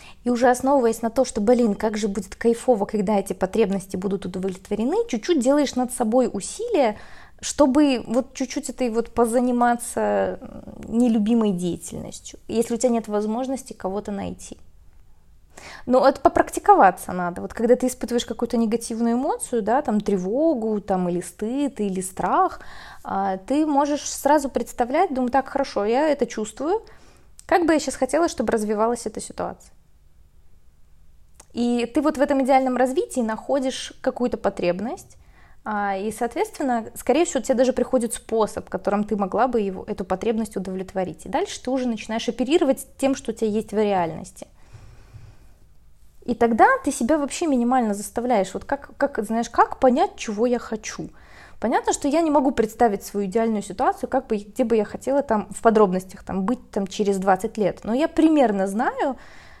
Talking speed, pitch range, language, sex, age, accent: 155 wpm, 205-265 Hz, Russian, female, 20-39, native